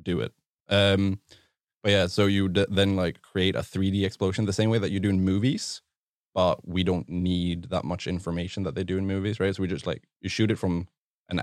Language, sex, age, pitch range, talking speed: English, male, 20-39, 90-105 Hz, 225 wpm